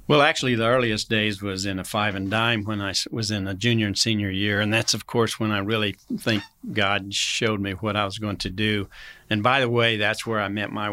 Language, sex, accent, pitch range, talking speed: English, male, American, 105-115 Hz, 240 wpm